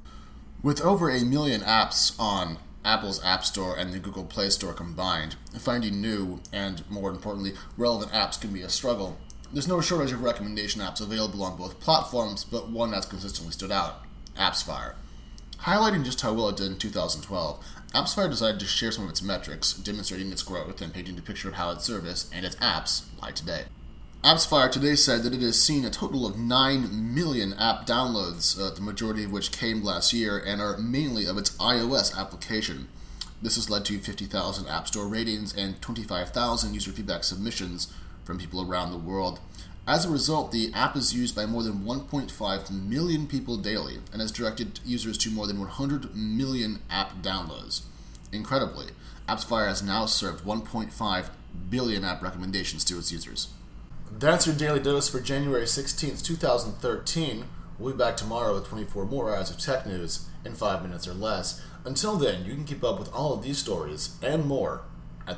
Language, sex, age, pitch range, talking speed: English, male, 30-49, 95-120 Hz, 180 wpm